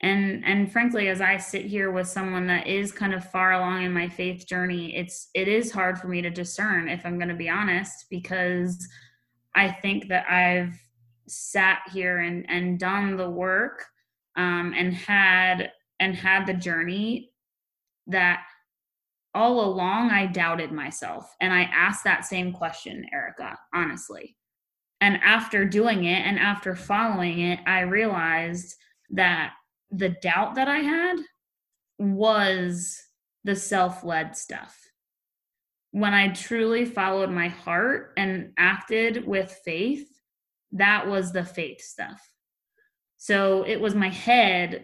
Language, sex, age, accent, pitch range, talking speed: English, female, 20-39, American, 180-200 Hz, 140 wpm